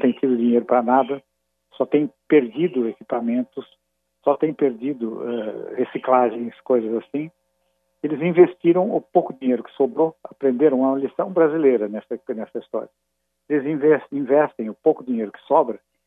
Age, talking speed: 60-79, 140 wpm